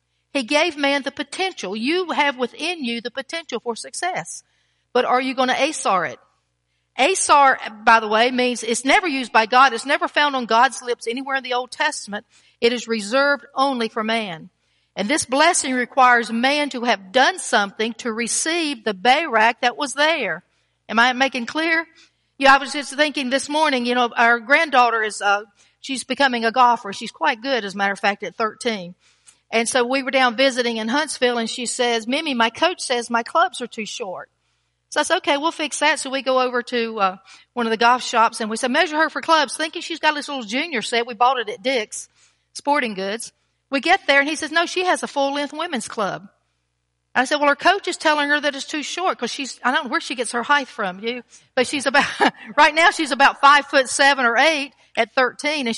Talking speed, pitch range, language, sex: 225 wpm, 230-290 Hz, English, female